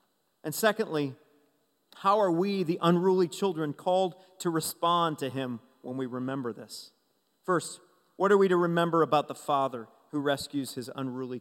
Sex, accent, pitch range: male, American, 160-200 Hz